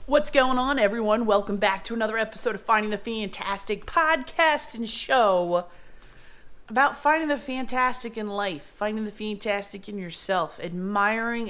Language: English